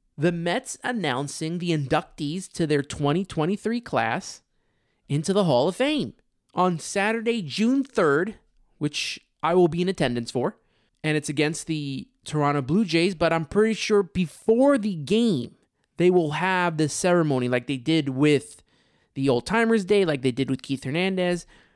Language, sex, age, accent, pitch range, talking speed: English, male, 20-39, American, 150-210 Hz, 155 wpm